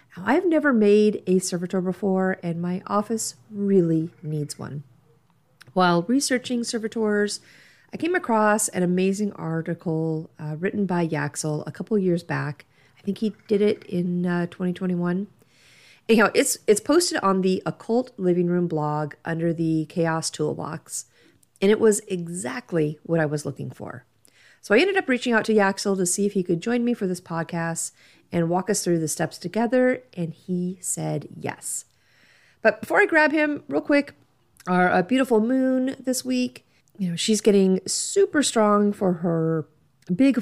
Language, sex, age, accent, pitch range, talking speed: English, female, 40-59, American, 165-220 Hz, 165 wpm